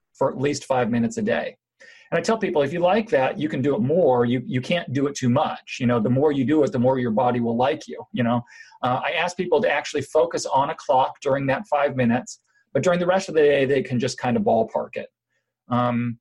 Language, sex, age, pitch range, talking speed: English, male, 40-59, 125-155 Hz, 265 wpm